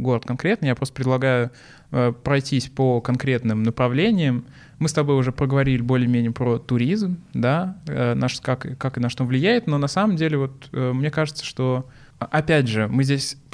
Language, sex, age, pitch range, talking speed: Russian, male, 20-39, 120-140 Hz, 180 wpm